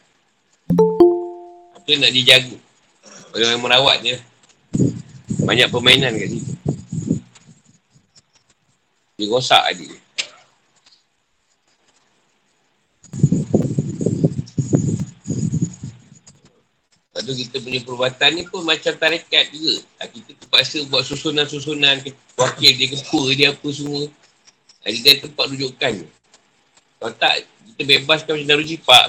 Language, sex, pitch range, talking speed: Malay, male, 135-175 Hz, 95 wpm